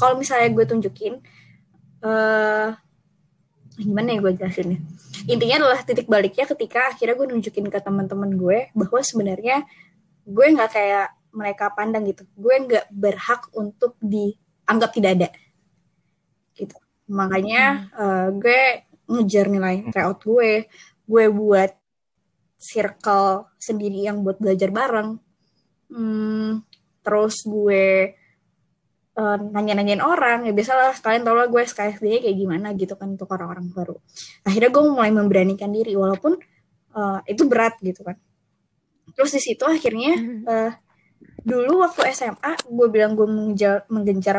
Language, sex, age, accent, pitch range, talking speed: Indonesian, female, 20-39, native, 195-230 Hz, 125 wpm